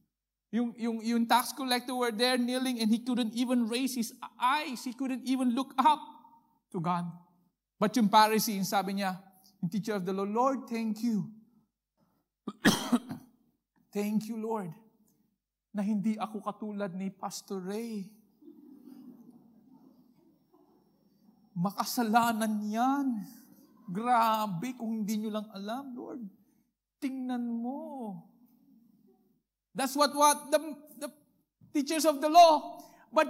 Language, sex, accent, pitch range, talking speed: English, male, Filipino, 200-260 Hz, 120 wpm